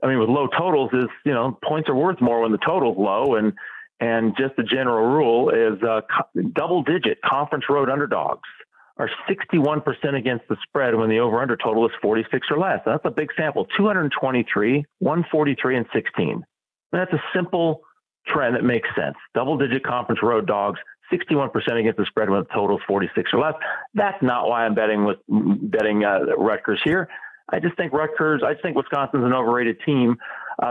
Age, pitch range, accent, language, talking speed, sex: 40-59, 115-150 Hz, American, English, 190 wpm, male